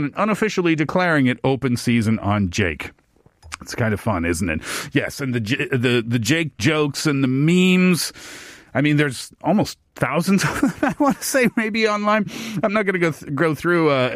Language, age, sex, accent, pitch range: Korean, 40-59, male, American, 120-165 Hz